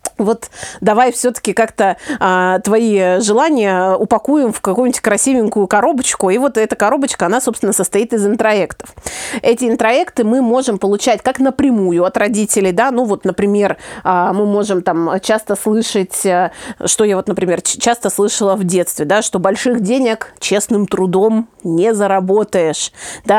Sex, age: female, 30-49